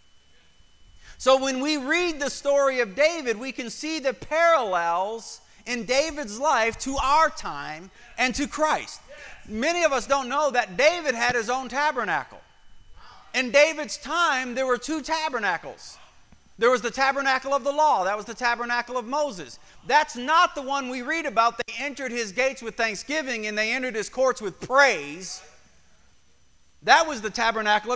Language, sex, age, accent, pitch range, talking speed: English, male, 40-59, American, 245-305 Hz, 165 wpm